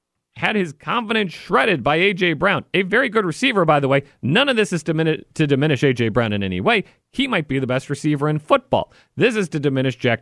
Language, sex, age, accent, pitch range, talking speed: English, male, 40-59, American, 115-165 Hz, 225 wpm